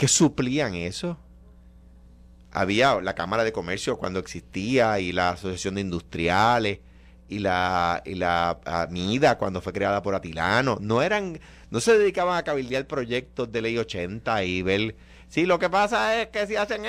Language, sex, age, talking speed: Spanish, male, 30-49, 165 wpm